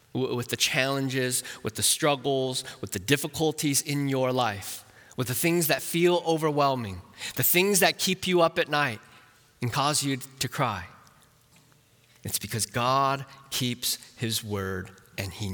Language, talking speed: English, 150 wpm